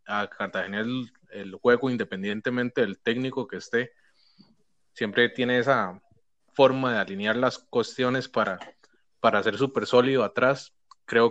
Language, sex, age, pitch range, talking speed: Spanish, male, 20-39, 105-125 Hz, 135 wpm